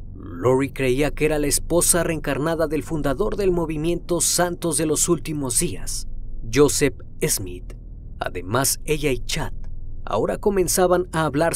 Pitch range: 115-160 Hz